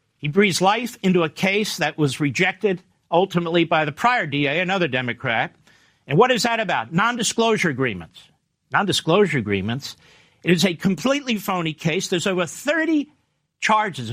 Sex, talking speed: male, 150 wpm